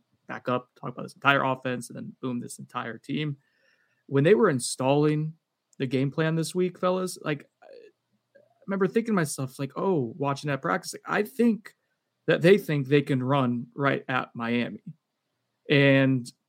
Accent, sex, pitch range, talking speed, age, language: American, male, 135-160 Hz, 170 wpm, 20-39, English